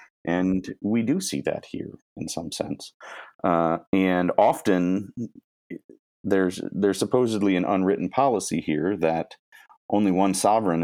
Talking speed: 125 wpm